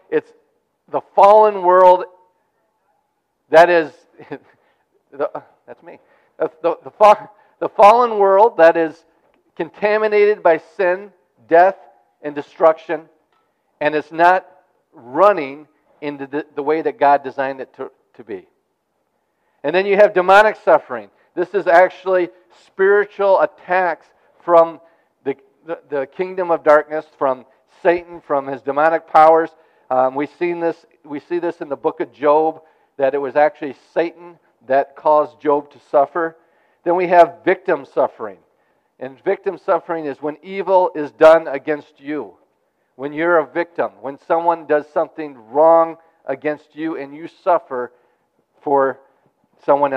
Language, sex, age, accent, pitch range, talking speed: English, male, 50-69, American, 145-180 Hz, 135 wpm